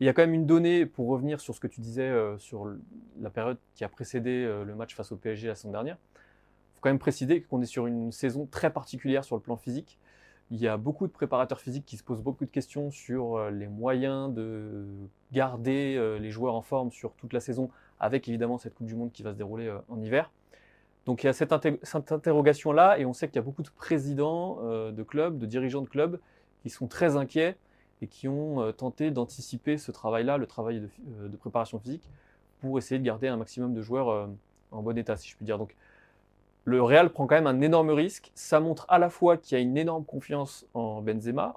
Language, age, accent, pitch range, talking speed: French, 20-39, French, 110-140 Hz, 230 wpm